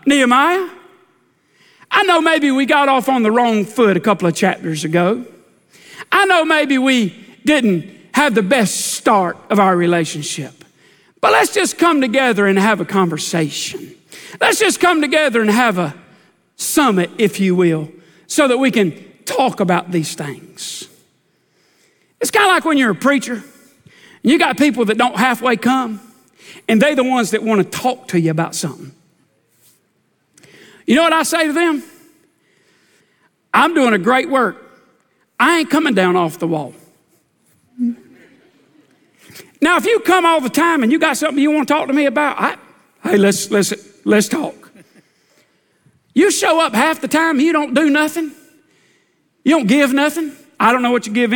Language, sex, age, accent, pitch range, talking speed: English, male, 50-69, American, 195-305 Hz, 170 wpm